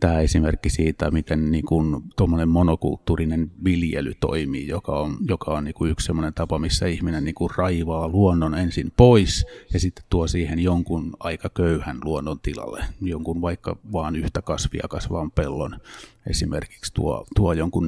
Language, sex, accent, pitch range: Finnish, male, native, 80-90 Hz